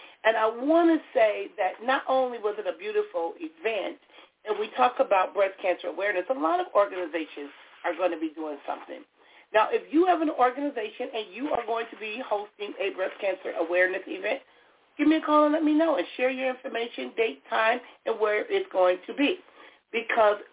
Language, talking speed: English, 200 wpm